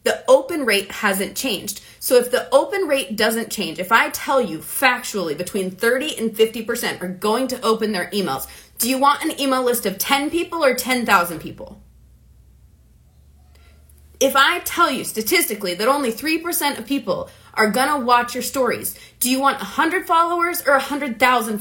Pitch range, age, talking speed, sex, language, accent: 220-295 Hz, 30-49, 170 wpm, female, English, American